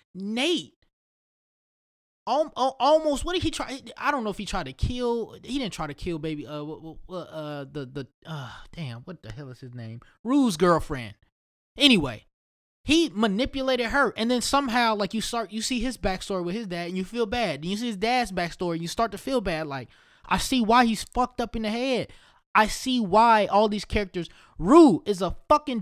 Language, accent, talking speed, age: English, American, 200 wpm, 20-39